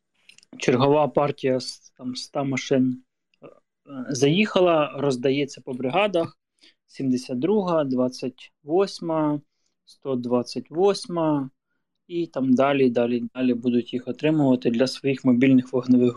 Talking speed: 90 wpm